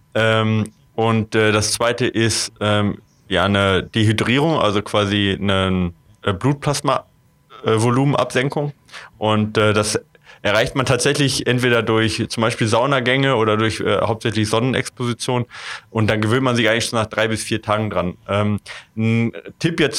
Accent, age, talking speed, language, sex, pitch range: German, 20-39, 125 wpm, German, male, 105-125 Hz